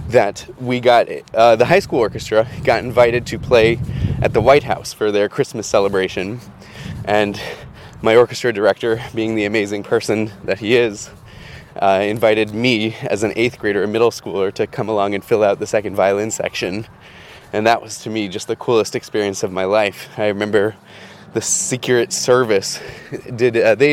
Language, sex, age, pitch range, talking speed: English, male, 20-39, 105-130 Hz, 180 wpm